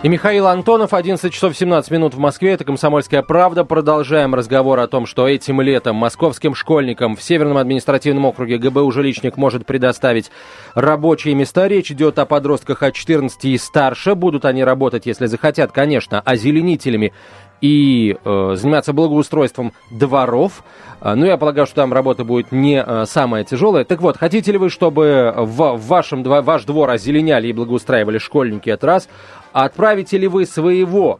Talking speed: 165 wpm